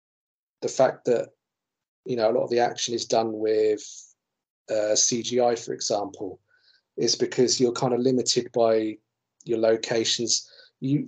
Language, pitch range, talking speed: English, 115-130 Hz, 145 wpm